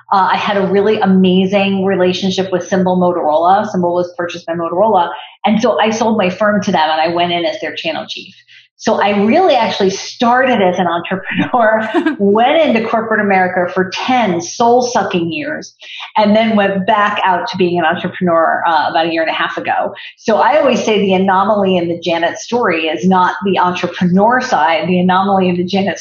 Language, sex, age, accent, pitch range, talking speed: English, female, 40-59, American, 180-215 Hz, 195 wpm